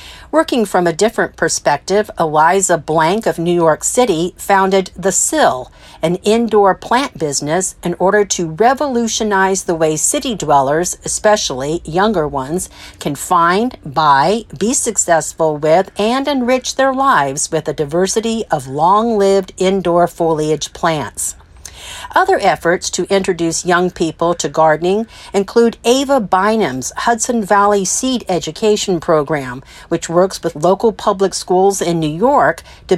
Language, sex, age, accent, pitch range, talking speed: English, female, 50-69, American, 165-215 Hz, 135 wpm